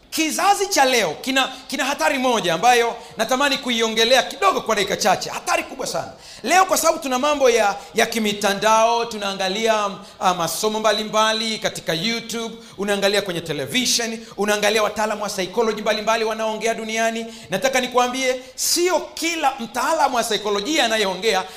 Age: 40-59